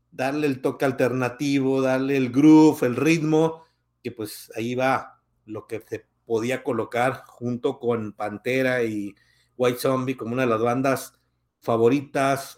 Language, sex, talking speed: Spanish, male, 145 wpm